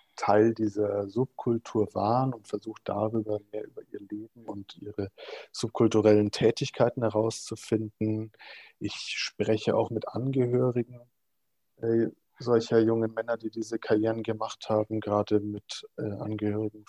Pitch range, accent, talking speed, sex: 105-115 Hz, German, 120 wpm, male